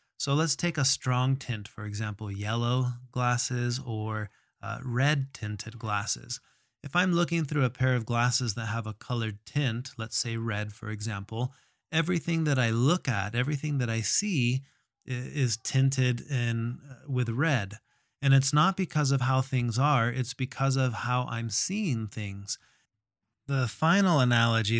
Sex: male